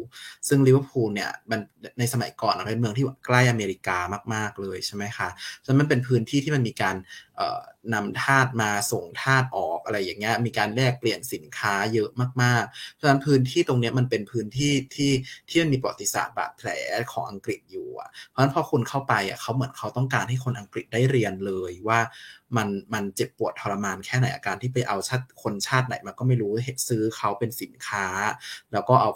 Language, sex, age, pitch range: Thai, male, 20-39, 105-130 Hz